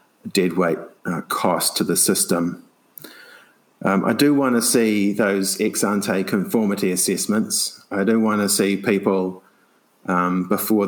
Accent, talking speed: Australian, 140 wpm